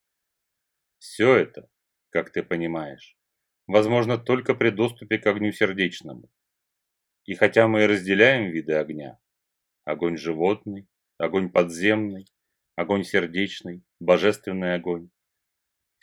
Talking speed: 110 wpm